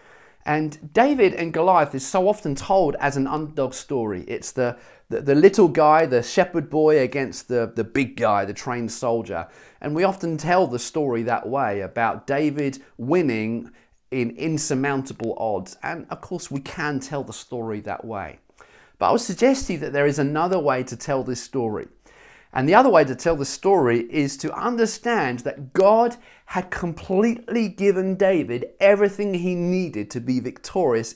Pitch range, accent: 125-185 Hz, British